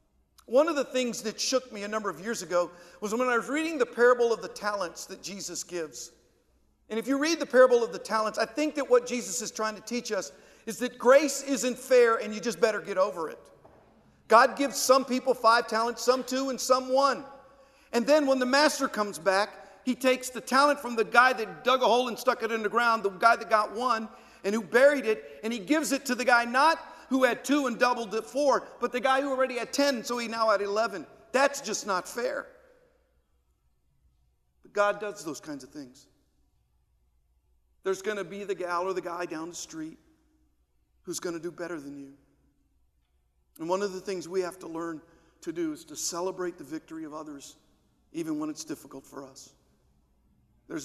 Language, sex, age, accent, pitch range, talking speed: English, male, 50-69, American, 185-265 Hz, 215 wpm